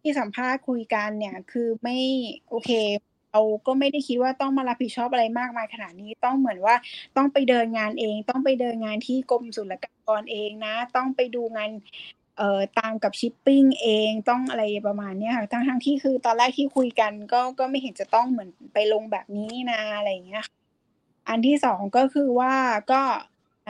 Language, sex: Thai, female